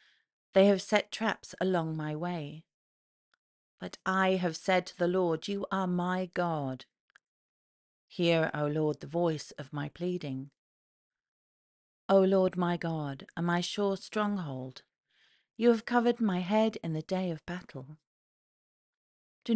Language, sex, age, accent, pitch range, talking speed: English, female, 40-59, British, 150-195 Hz, 140 wpm